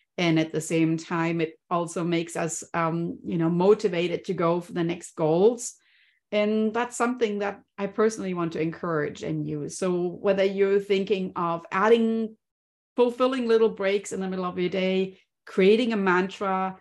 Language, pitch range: English, 170-215 Hz